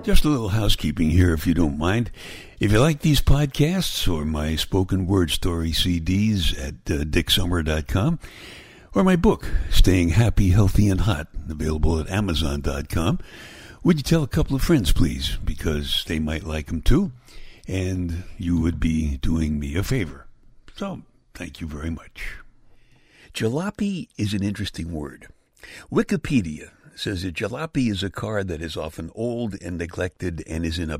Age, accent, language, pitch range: 60-79, American, English, 80-130 Hz